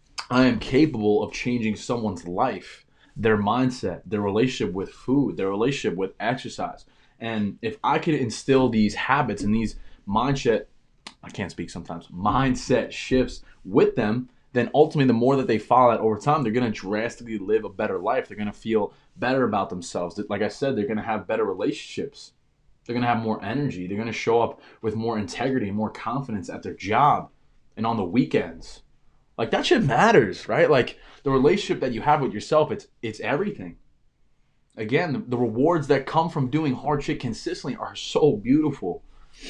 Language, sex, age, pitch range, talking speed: English, male, 20-39, 110-135 Hz, 185 wpm